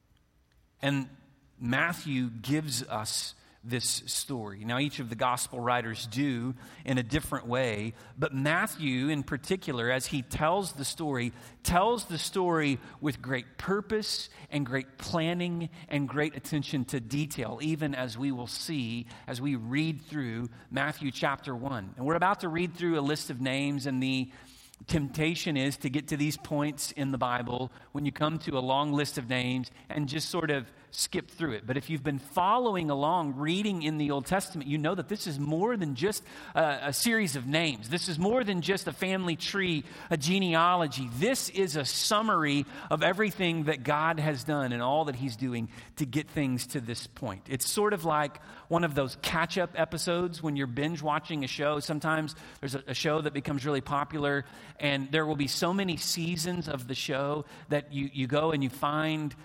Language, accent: English, American